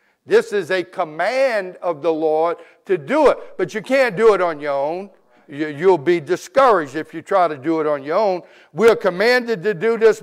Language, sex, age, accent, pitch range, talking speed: English, male, 60-79, American, 175-230 Hz, 210 wpm